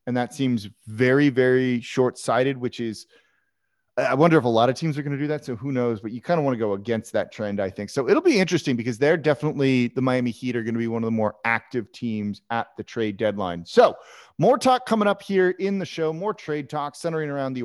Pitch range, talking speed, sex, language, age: 115-160 Hz, 250 wpm, male, English, 30-49